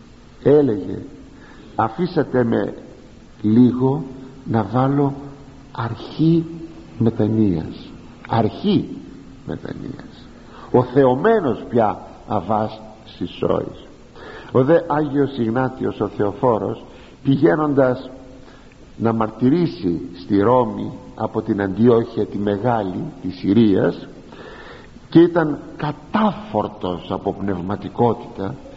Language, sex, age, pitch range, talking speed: Greek, male, 50-69, 110-145 Hz, 80 wpm